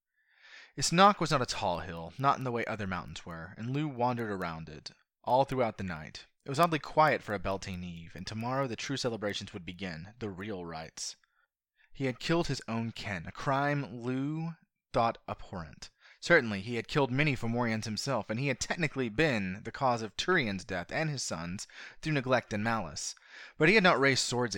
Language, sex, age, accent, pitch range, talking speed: English, male, 20-39, American, 100-145 Hz, 200 wpm